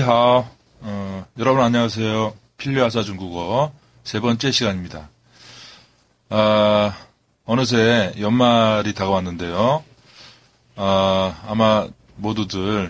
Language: Korean